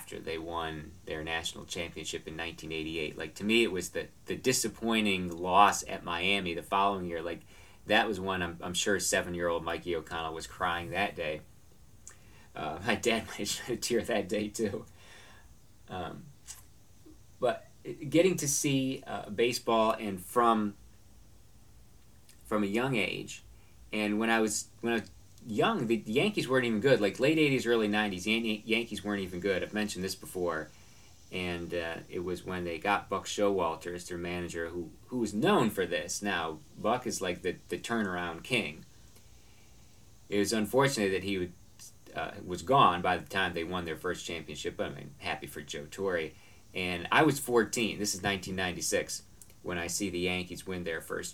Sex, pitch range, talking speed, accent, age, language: male, 90-110 Hz, 170 wpm, American, 40-59, English